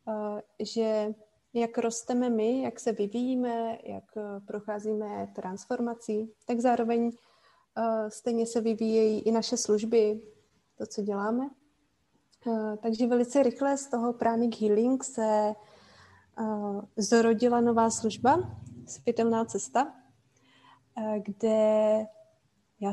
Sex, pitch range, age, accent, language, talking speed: female, 215-250 Hz, 30-49, native, Czech, 110 wpm